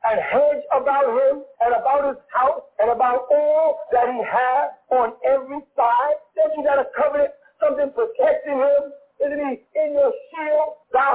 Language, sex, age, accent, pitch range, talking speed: English, male, 50-69, American, 245-315 Hz, 165 wpm